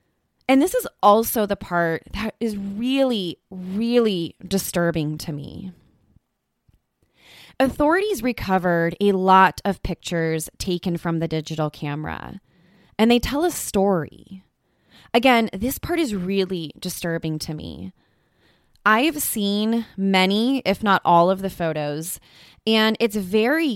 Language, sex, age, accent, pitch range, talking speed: English, female, 20-39, American, 170-230 Hz, 125 wpm